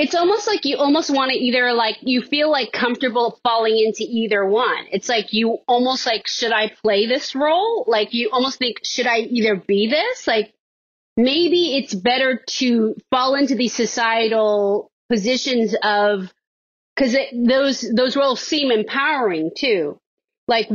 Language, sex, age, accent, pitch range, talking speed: English, female, 30-49, American, 225-295 Hz, 160 wpm